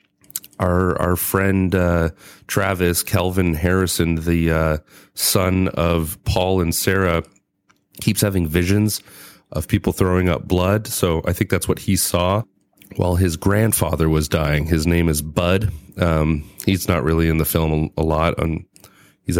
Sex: male